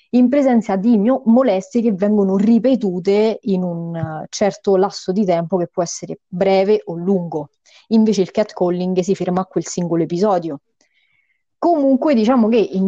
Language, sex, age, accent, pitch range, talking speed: Italian, female, 30-49, native, 180-230 Hz, 150 wpm